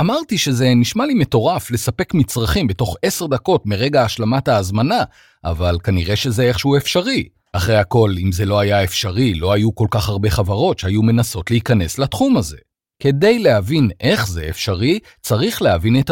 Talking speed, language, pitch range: 165 wpm, Hebrew, 100-145 Hz